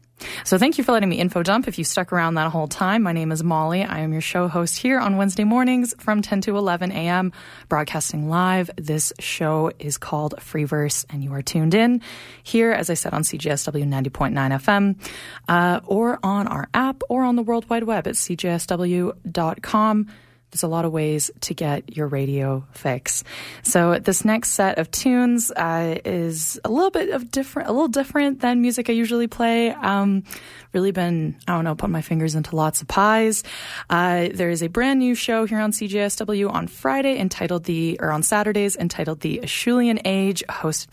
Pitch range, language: 160-215 Hz, English